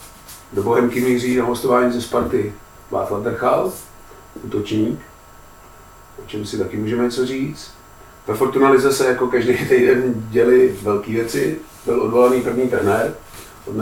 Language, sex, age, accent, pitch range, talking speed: Czech, male, 40-59, native, 105-125 Hz, 130 wpm